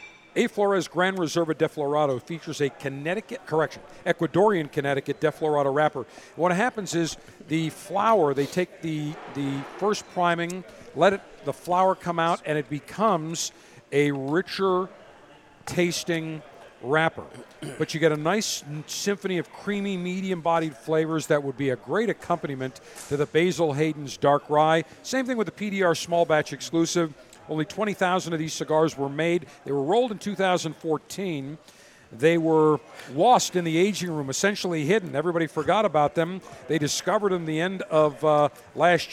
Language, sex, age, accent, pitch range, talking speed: English, male, 50-69, American, 150-180 Hz, 155 wpm